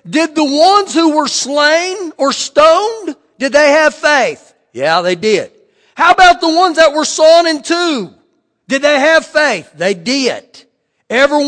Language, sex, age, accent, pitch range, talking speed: English, male, 50-69, American, 230-300 Hz, 160 wpm